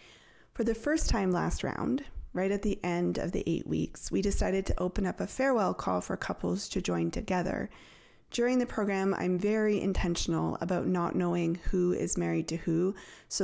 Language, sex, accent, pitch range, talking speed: English, female, American, 170-210 Hz, 190 wpm